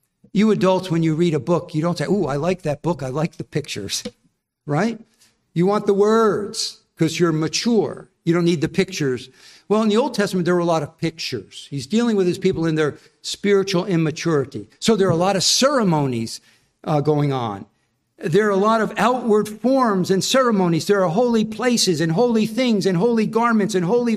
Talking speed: 205 wpm